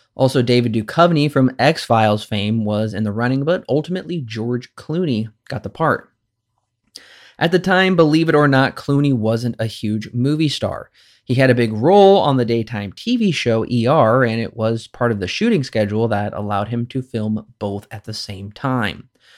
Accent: American